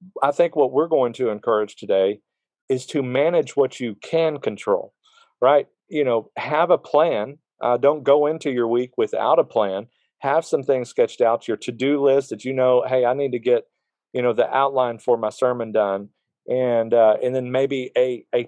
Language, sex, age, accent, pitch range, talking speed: English, male, 40-59, American, 115-145 Hz, 200 wpm